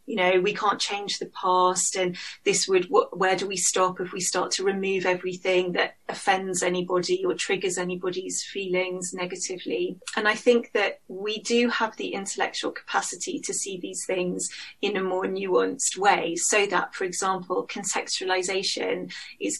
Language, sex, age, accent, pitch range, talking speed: English, female, 30-49, British, 180-230 Hz, 165 wpm